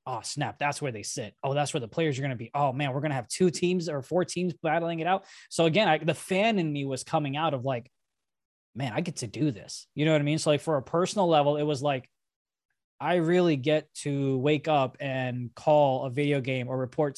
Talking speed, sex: 255 wpm, male